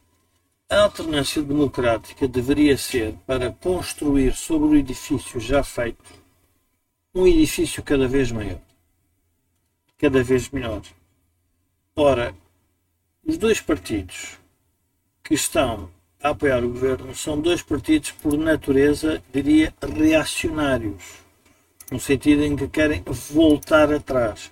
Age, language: 50-69, Portuguese